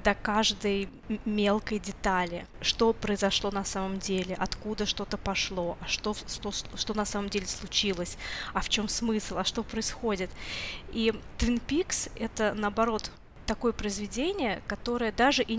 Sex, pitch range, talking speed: female, 205-245 Hz, 140 wpm